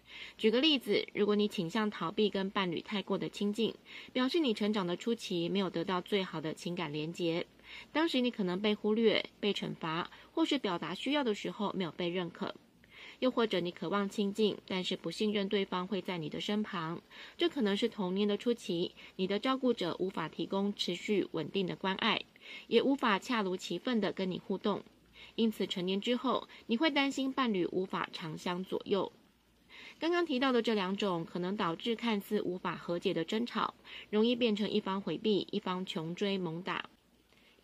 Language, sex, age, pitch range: Chinese, female, 20-39, 185-225 Hz